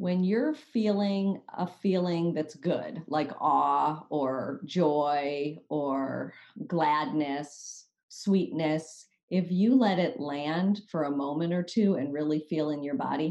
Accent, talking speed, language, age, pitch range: American, 135 wpm, English, 40-59, 150-190 Hz